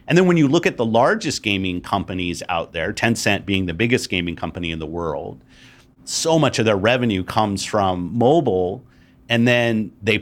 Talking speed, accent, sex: 190 wpm, American, male